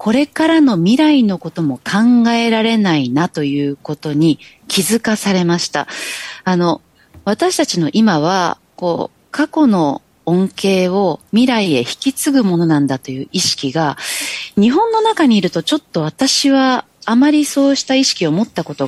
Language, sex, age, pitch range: Japanese, female, 30-49, 165-270 Hz